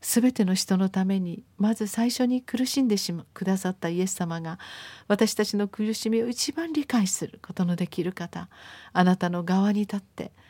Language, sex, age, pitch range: Japanese, female, 40-59, 180-220 Hz